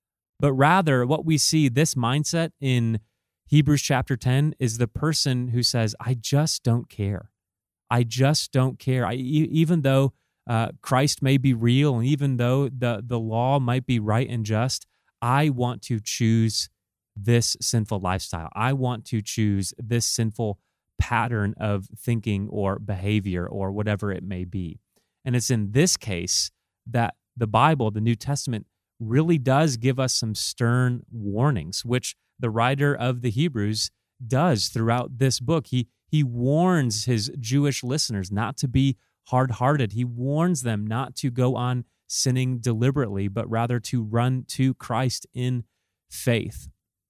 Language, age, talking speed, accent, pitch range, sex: English, 30-49, 155 wpm, American, 110-135 Hz, male